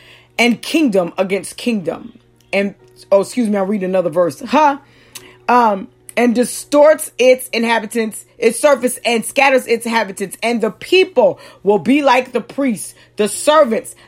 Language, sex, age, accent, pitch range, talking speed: English, female, 40-59, American, 200-275 Hz, 145 wpm